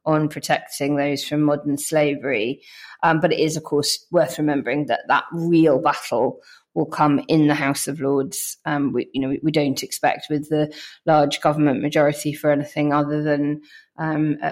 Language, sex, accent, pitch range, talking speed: English, female, British, 145-160 Hz, 170 wpm